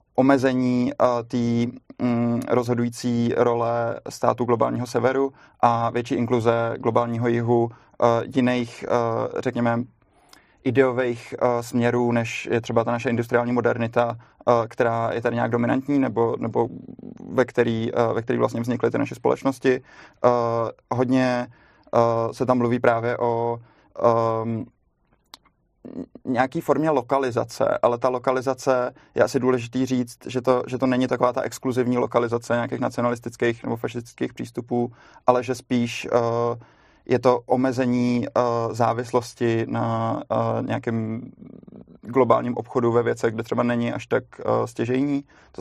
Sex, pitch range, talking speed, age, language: male, 115-125 Hz, 135 wpm, 20-39, Czech